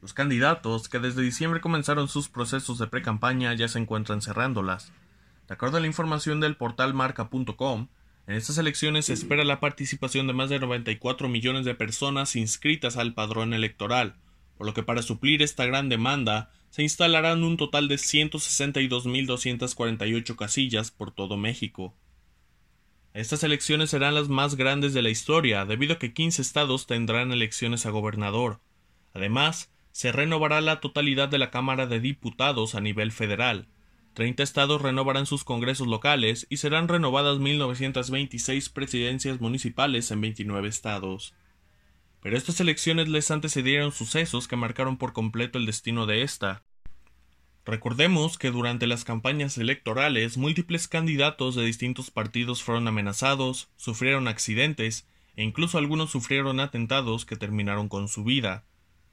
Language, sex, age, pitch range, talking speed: Spanish, male, 20-39, 110-140 Hz, 145 wpm